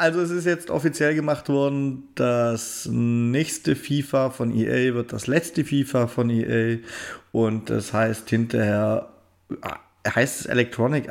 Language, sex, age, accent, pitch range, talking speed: German, male, 40-59, German, 115-150 Hz, 135 wpm